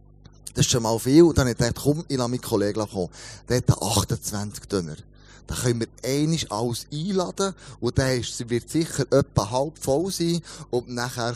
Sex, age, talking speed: male, 20-39, 180 wpm